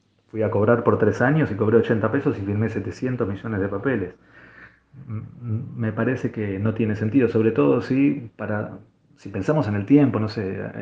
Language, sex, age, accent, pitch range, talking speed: Spanish, male, 30-49, Argentinian, 105-125 Hz, 185 wpm